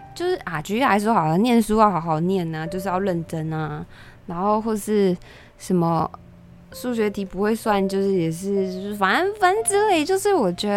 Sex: female